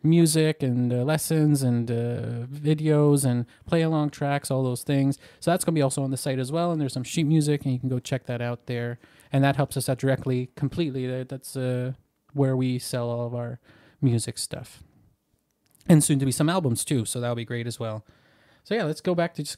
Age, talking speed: 20-39, 225 wpm